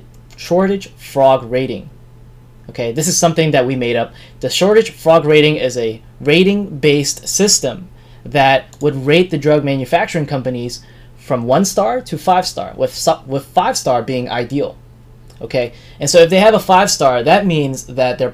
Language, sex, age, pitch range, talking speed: English, male, 20-39, 125-170 Hz, 170 wpm